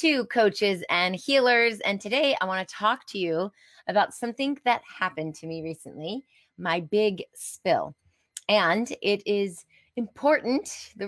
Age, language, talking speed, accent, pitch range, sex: 20-39, English, 145 wpm, American, 185-245 Hz, female